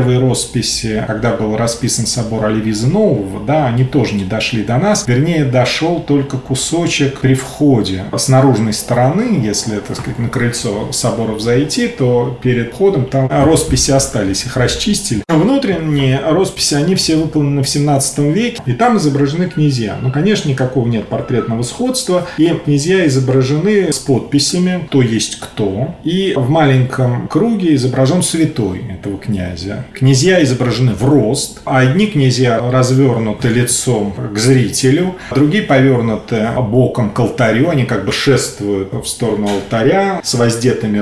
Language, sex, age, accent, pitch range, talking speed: Russian, male, 30-49, native, 115-145 Hz, 140 wpm